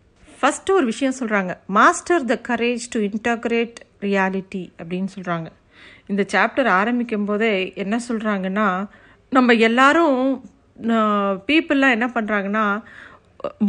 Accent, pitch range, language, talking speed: native, 200-255 Hz, Tamil, 100 wpm